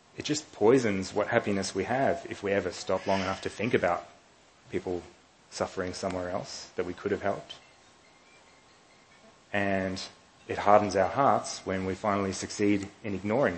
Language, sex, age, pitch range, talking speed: English, male, 30-49, 95-110 Hz, 160 wpm